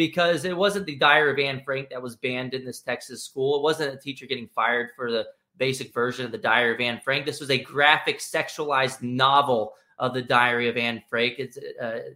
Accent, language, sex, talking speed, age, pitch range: American, English, male, 220 wpm, 30-49, 125-155 Hz